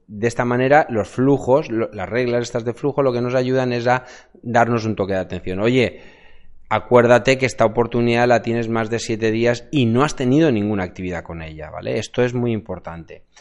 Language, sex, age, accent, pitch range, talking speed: Spanish, male, 20-39, Spanish, 110-135 Hz, 200 wpm